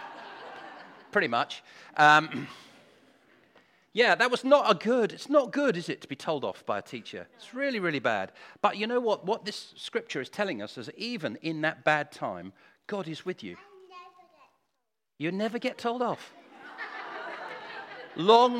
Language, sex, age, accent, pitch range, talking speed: English, male, 40-59, British, 140-230 Hz, 170 wpm